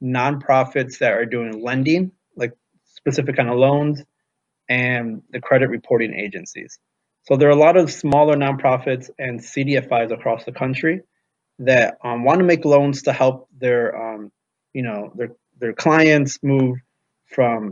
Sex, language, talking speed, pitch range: male, English, 150 wpm, 125-145 Hz